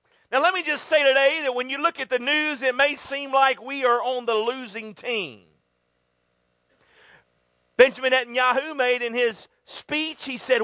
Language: English